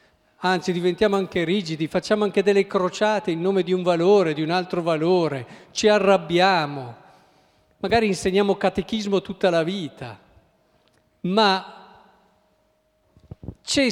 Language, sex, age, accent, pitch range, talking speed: Italian, male, 50-69, native, 155-220 Hz, 115 wpm